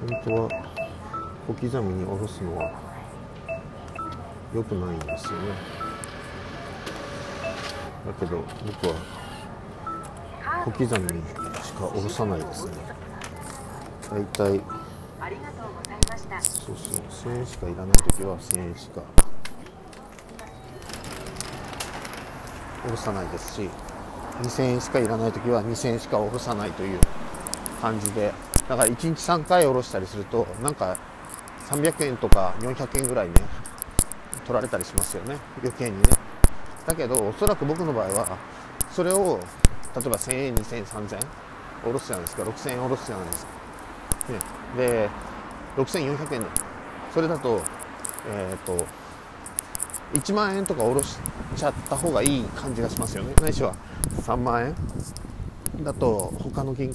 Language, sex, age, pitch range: Japanese, male, 50-69, 95-125 Hz